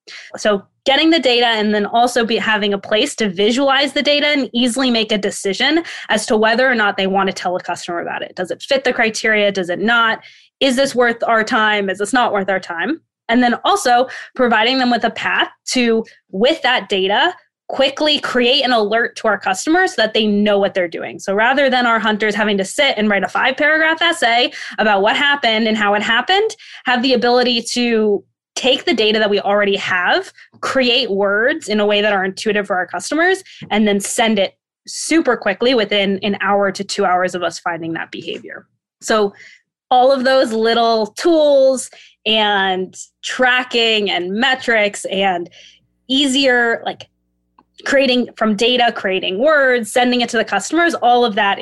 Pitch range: 200-255 Hz